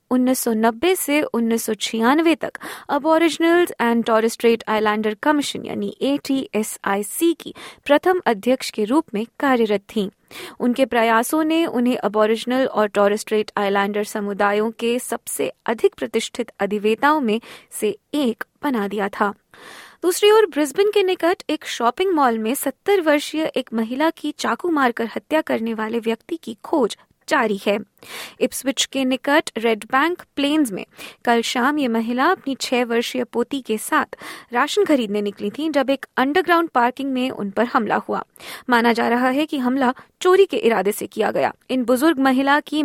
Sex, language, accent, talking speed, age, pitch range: female, Hindi, native, 150 wpm, 20-39, 220-295 Hz